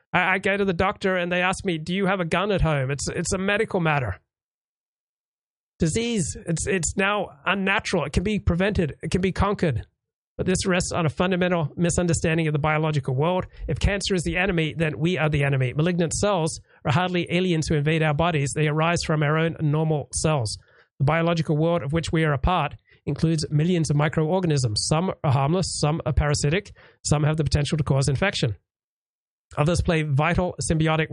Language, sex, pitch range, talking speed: English, male, 150-175 Hz, 195 wpm